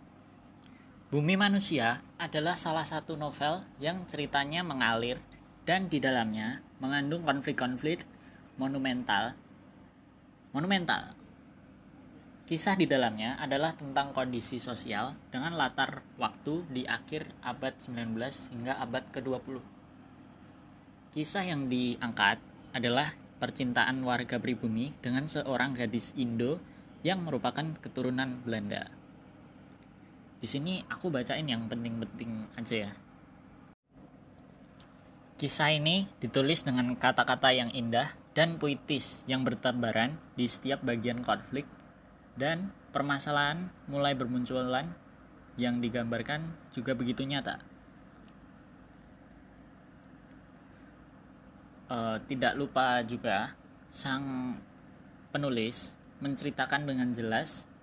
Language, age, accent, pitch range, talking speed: Indonesian, 20-39, native, 120-150 Hz, 90 wpm